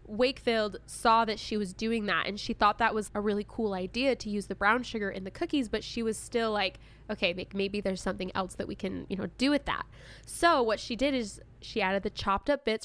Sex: female